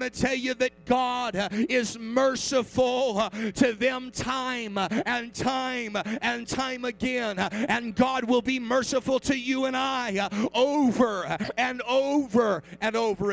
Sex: male